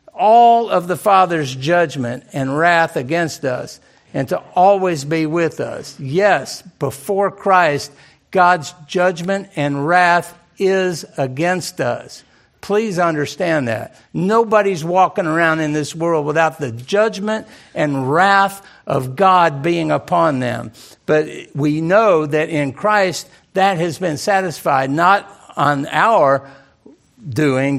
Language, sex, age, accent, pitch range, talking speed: English, male, 60-79, American, 135-180 Hz, 125 wpm